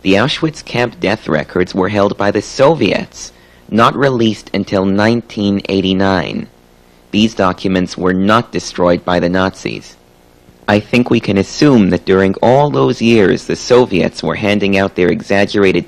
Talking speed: 145 wpm